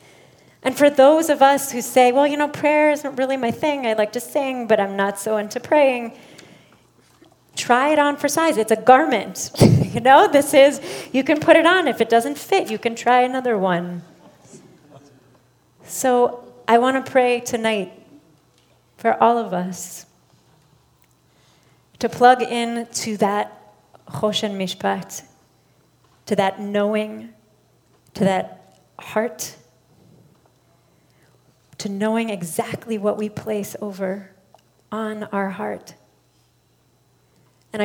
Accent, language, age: American, English, 30-49